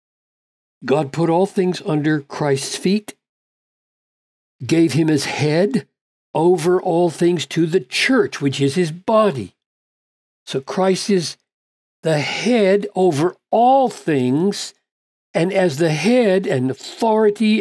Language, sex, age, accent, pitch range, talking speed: English, male, 60-79, American, 145-195 Hz, 120 wpm